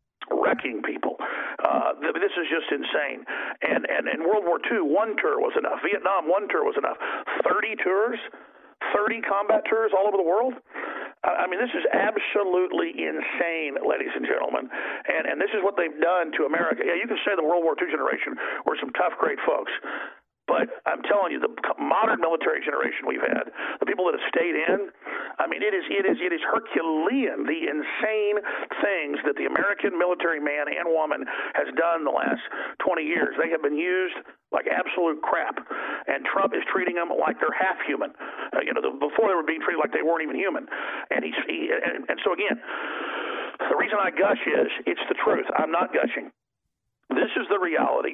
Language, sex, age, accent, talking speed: English, male, 50-69, American, 195 wpm